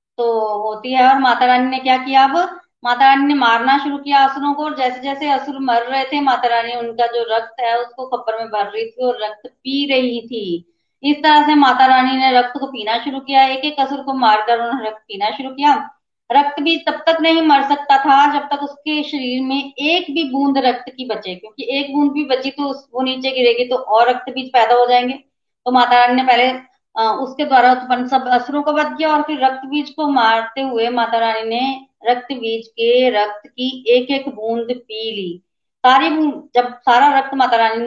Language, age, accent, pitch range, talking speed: Hindi, 30-49, native, 235-285 Hz, 215 wpm